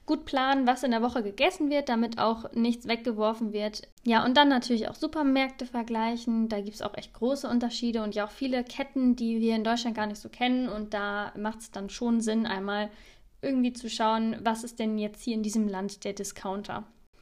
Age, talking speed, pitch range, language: 10-29, 215 wpm, 215-250 Hz, German